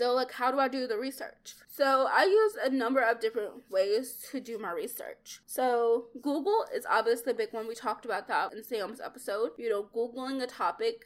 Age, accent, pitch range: 20-39, American, 215-275 Hz